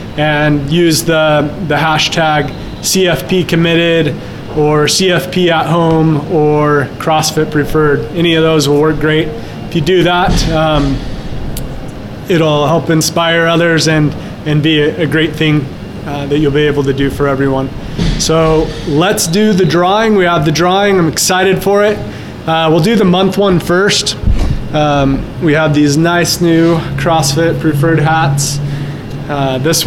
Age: 20-39